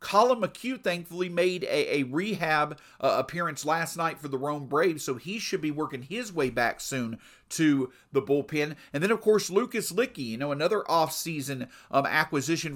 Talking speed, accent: 185 wpm, American